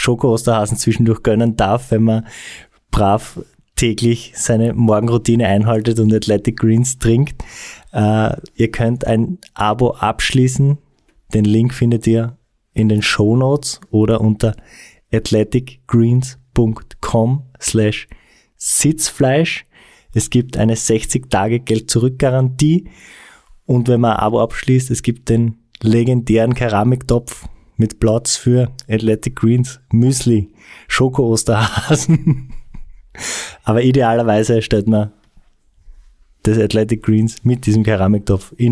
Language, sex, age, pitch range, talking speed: German, male, 20-39, 110-125 Hz, 105 wpm